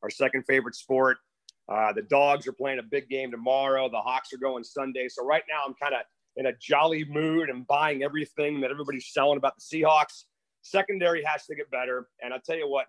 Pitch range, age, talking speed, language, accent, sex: 135-185 Hz, 40-59, 220 wpm, English, American, male